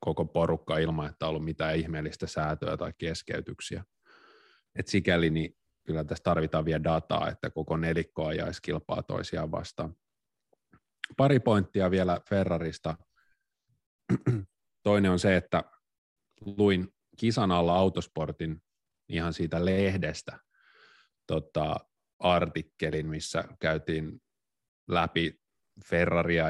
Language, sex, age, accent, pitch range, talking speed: Finnish, male, 30-49, native, 80-95 Hz, 100 wpm